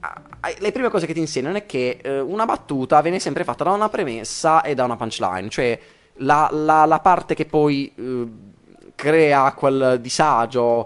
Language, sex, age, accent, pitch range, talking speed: Italian, male, 20-39, native, 110-160 Hz, 165 wpm